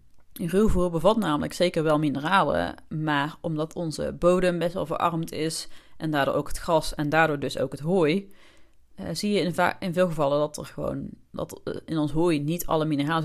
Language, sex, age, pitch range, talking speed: Dutch, female, 30-49, 140-170 Hz, 205 wpm